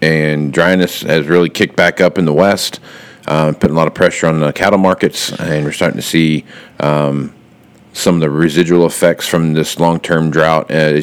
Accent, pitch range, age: American, 75-80 Hz, 40-59